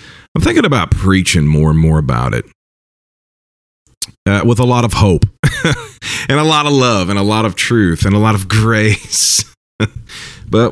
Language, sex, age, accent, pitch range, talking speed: English, male, 40-59, American, 85-110 Hz, 175 wpm